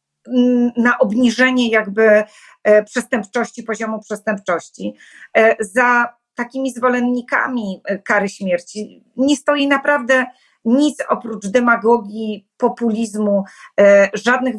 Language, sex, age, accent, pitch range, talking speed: Polish, female, 30-49, native, 215-250 Hz, 80 wpm